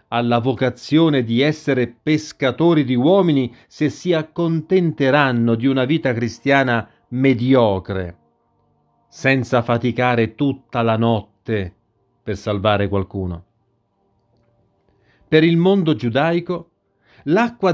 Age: 40-59